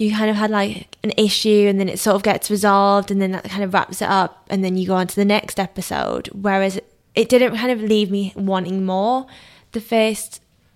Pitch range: 185-225 Hz